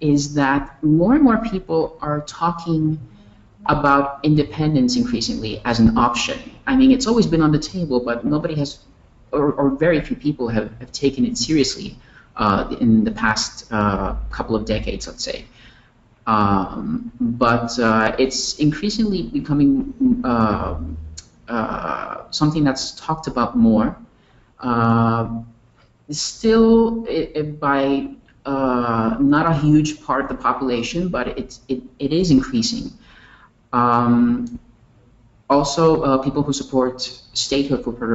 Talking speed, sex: 135 wpm, male